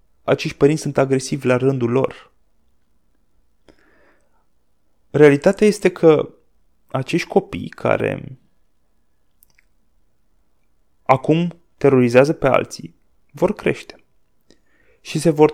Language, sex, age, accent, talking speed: Romanian, male, 20-39, native, 85 wpm